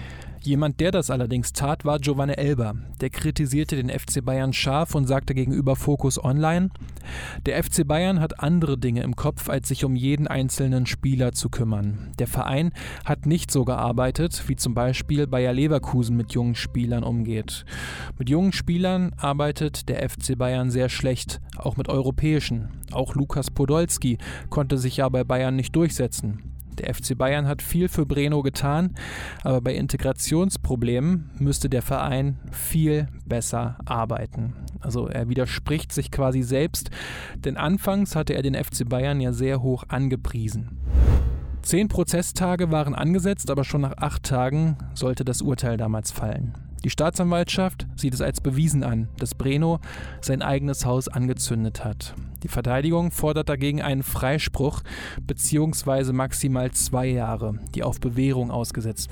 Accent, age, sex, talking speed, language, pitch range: German, 20-39, male, 150 wpm, German, 120-150 Hz